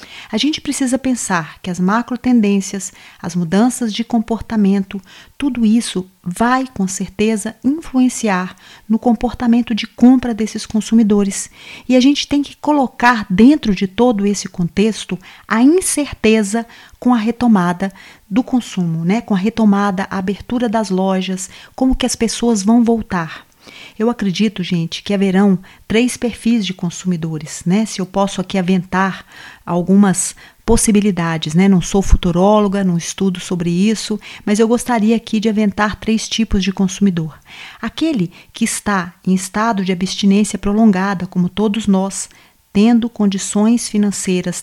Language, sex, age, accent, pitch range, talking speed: Portuguese, female, 40-59, Brazilian, 190-230 Hz, 140 wpm